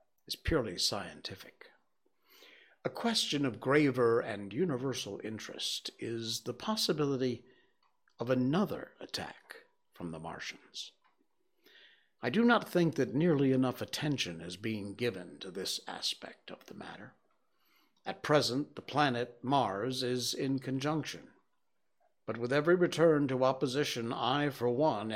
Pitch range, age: 115-165 Hz, 60-79